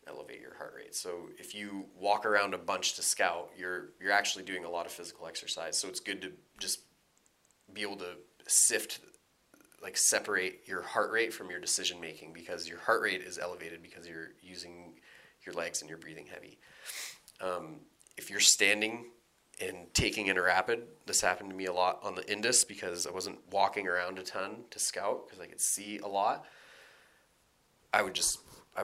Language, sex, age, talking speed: English, male, 30-49, 190 wpm